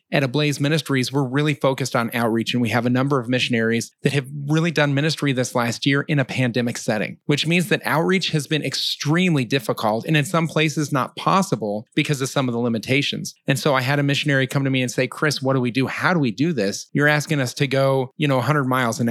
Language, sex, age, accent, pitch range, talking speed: English, male, 30-49, American, 125-150 Hz, 245 wpm